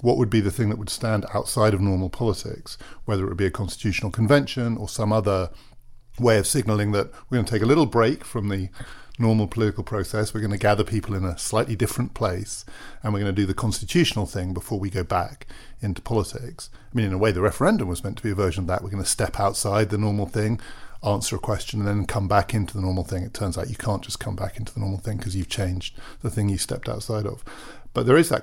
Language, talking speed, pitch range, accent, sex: English, 255 wpm, 100-120 Hz, British, male